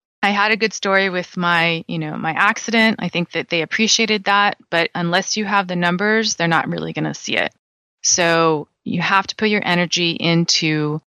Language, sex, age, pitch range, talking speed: English, female, 20-39, 165-190 Hz, 205 wpm